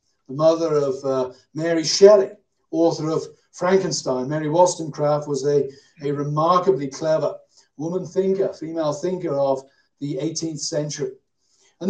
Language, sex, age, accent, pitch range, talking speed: English, male, 50-69, British, 150-195 Hz, 125 wpm